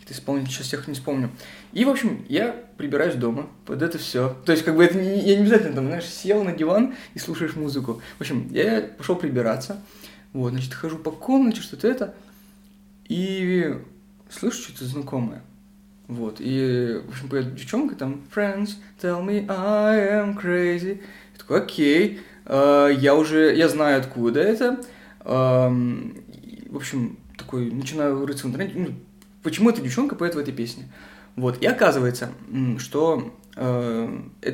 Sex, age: male, 20-39